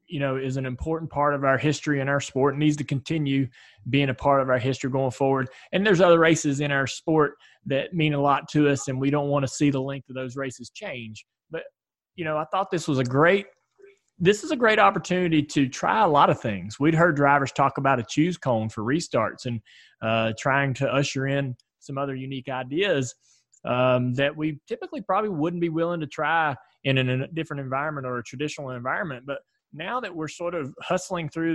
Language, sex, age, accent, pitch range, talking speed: English, male, 20-39, American, 130-165 Hz, 220 wpm